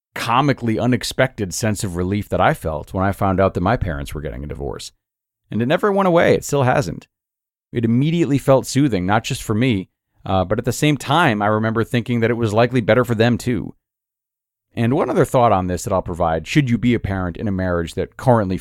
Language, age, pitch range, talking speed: English, 40-59, 95-120 Hz, 230 wpm